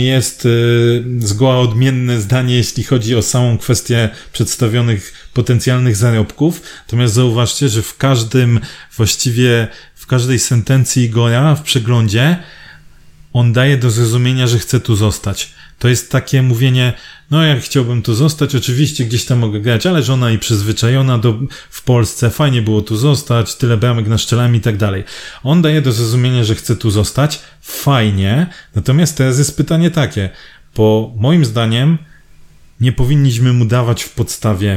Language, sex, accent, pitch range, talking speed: Polish, male, native, 110-130 Hz, 150 wpm